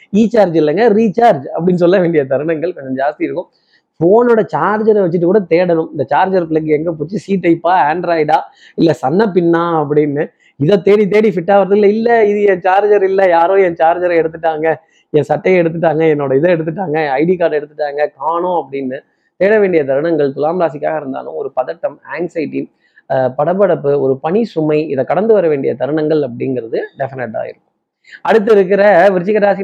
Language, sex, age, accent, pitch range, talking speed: Tamil, male, 20-39, native, 150-200 Hz, 150 wpm